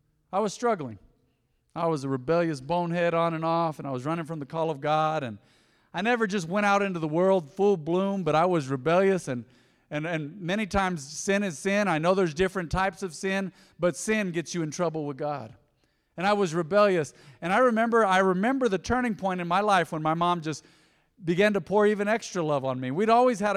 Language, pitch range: English, 150-190 Hz